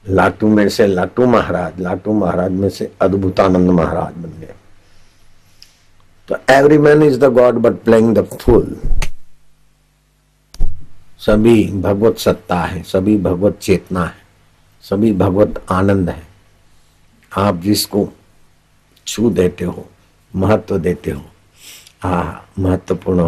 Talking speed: 115 wpm